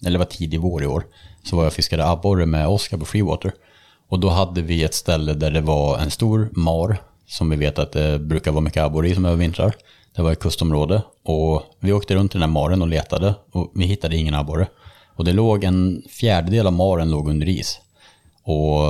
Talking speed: 225 wpm